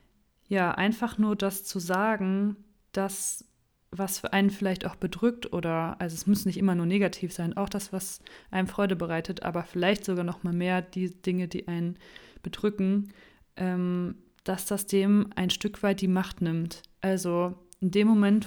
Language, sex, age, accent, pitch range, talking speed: German, female, 30-49, German, 180-195 Hz, 170 wpm